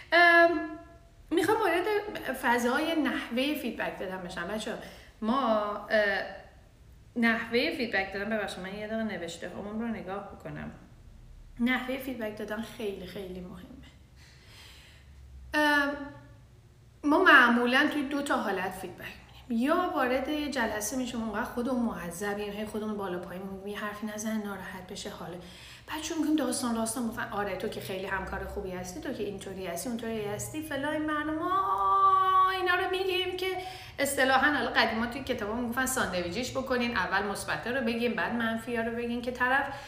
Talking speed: 145 wpm